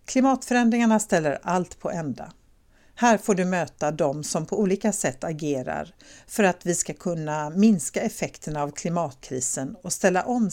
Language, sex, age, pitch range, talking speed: Swedish, female, 60-79, 150-210 Hz, 155 wpm